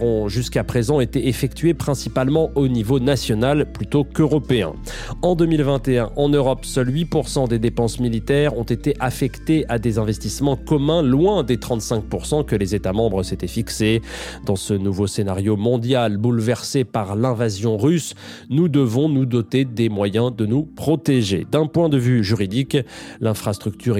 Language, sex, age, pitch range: French, male, 30-49, 110-140 Hz